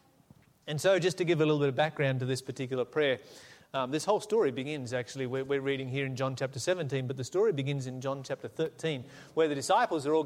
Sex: male